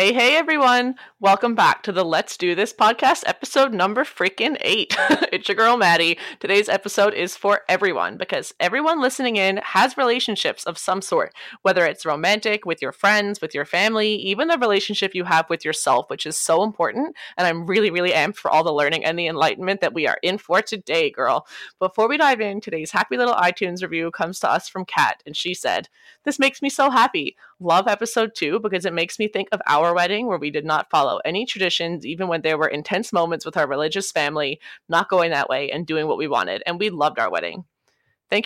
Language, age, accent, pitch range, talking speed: English, 20-39, American, 170-225 Hz, 215 wpm